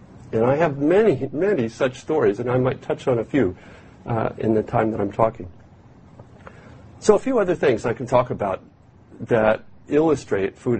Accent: American